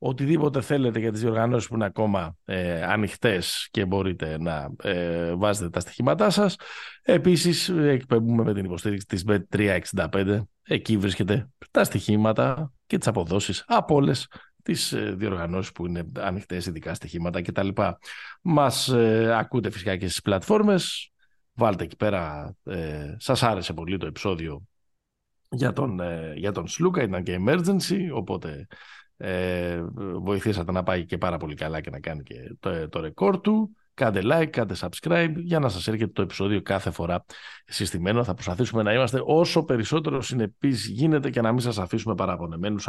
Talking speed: 155 wpm